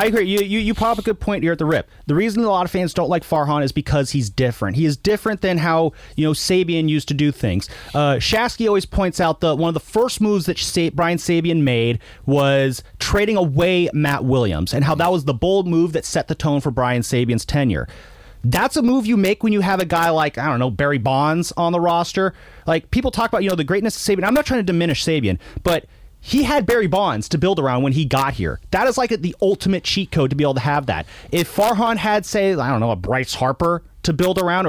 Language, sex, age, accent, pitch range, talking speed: English, male, 30-49, American, 140-200 Hz, 255 wpm